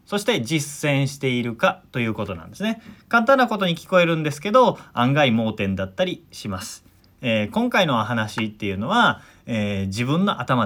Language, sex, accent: Japanese, male, native